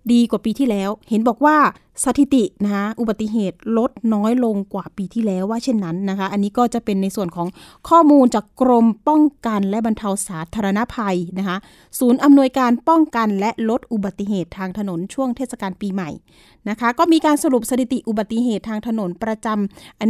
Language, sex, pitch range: Thai, female, 195-245 Hz